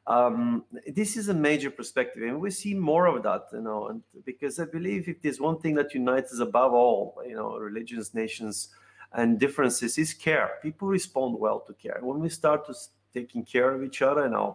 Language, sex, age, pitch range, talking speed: English, male, 30-49, 120-160 Hz, 210 wpm